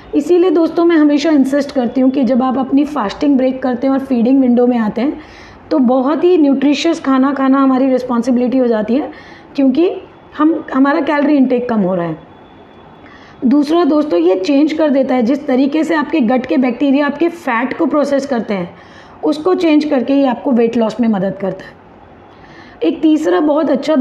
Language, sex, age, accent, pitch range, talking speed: Hindi, female, 30-49, native, 250-295 Hz, 190 wpm